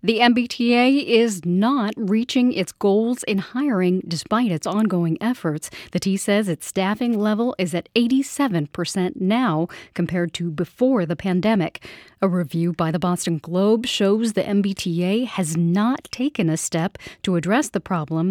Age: 40-59